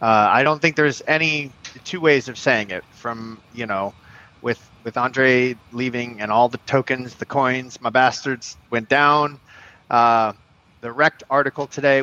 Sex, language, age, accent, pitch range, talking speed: male, English, 30-49, American, 110-145 Hz, 165 wpm